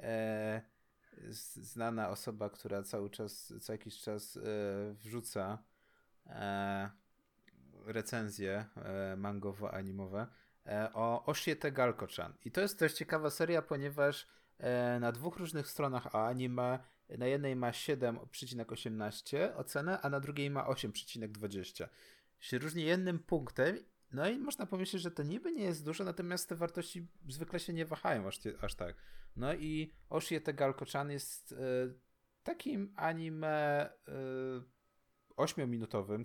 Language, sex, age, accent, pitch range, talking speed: Polish, male, 30-49, native, 110-145 Hz, 115 wpm